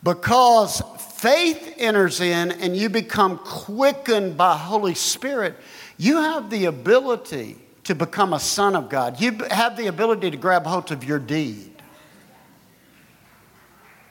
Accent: American